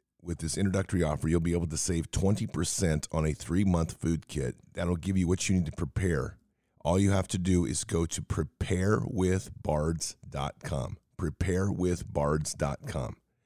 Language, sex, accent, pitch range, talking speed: English, male, American, 80-95 Hz, 145 wpm